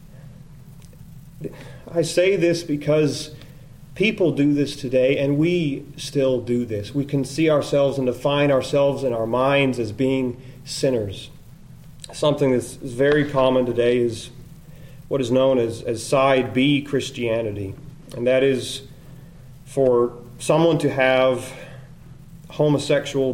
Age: 30-49